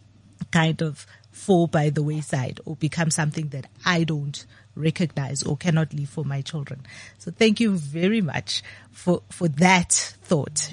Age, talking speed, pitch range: 30-49, 155 wpm, 150-195 Hz